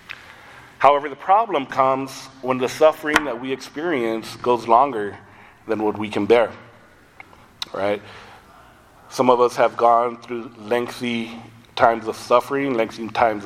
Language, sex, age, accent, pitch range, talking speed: English, male, 30-49, American, 110-125 Hz, 135 wpm